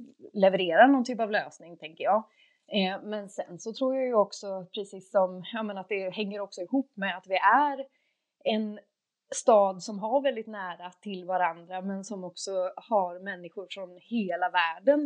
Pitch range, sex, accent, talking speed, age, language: 185-230 Hz, female, native, 175 wpm, 30-49, Swedish